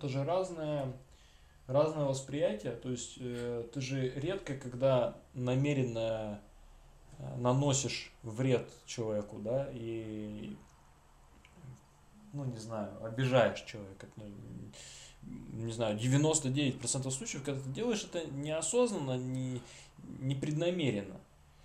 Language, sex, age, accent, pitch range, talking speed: Russian, male, 20-39, native, 105-135 Hz, 95 wpm